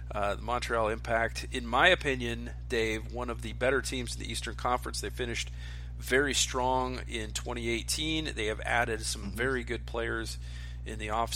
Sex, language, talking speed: male, English, 175 wpm